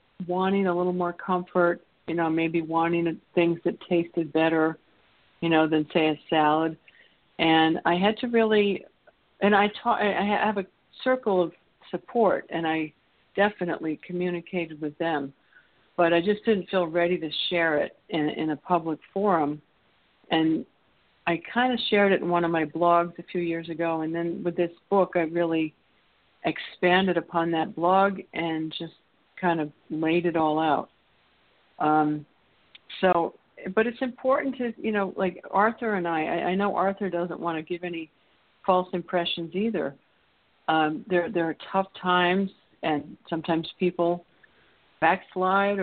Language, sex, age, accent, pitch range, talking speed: English, female, 60-79, American, 160-185 Hz, 160 wpm